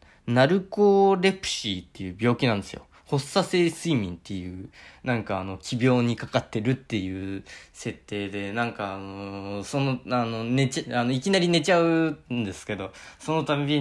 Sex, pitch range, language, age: male, 100-130 Hz, Japanese, 20-39